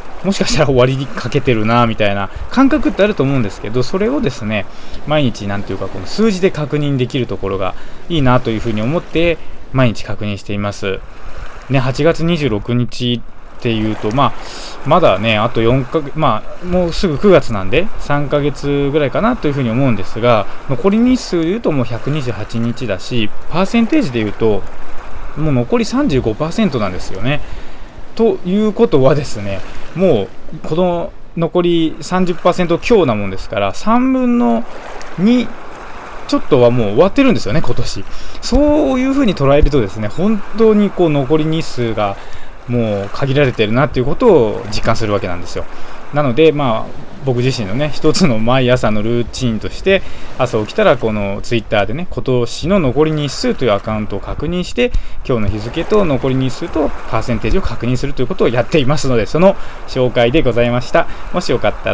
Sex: male